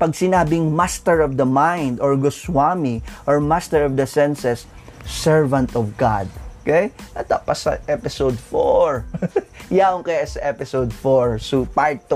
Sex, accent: male, native